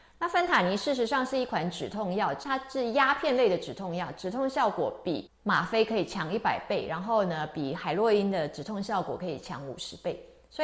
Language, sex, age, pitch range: Chinese, female, 30-49, 180-255 Hz